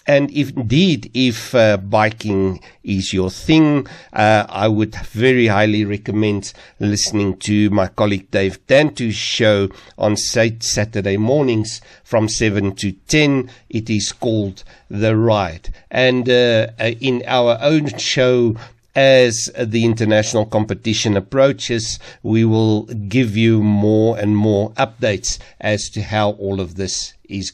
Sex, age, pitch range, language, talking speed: male, 50-69, 105-125 Hz, English, 130 wpm